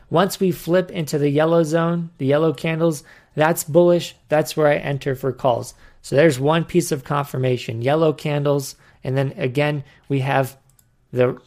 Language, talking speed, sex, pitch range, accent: English, 165 wpm, male, 140-175 Hz, American